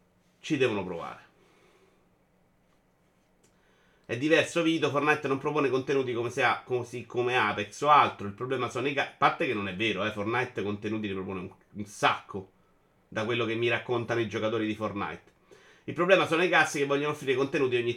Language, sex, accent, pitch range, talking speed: Italian, male, native, 120-160 Hz, 185 wpm